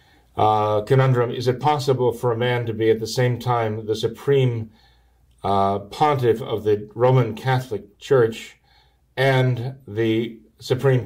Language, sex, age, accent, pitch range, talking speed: English, male, 40-59, American, 100-125 Hz, 140 wpm